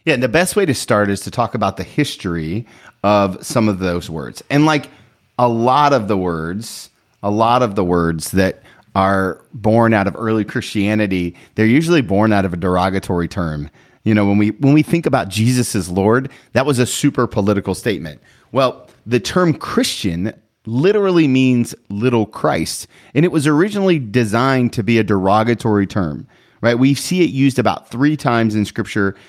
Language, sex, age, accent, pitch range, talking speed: English, male, 30-49, American, 100-130 Hz, 185 wpm